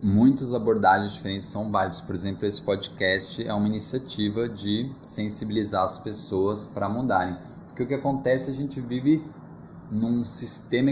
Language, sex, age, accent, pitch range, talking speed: Portuguese, male, 20-39, Brazilian, 105-135 Hz, 150 wpm